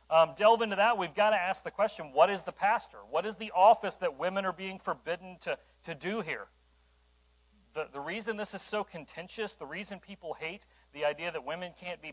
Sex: male